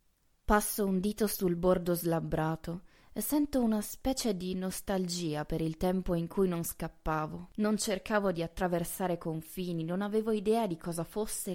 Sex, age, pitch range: female, 20-39, 160-200 Hz